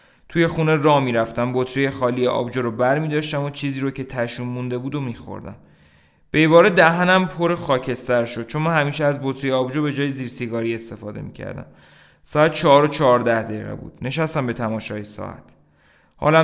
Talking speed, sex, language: 170 wpm, male, Persian